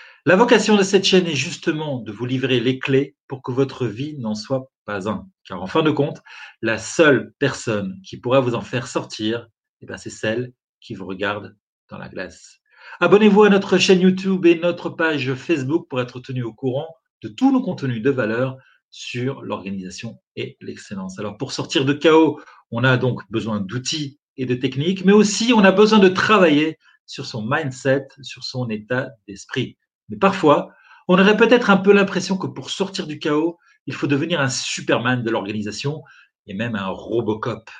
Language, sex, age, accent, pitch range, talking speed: French, male, 40-59, French, 125-175 Hz, 190 wpm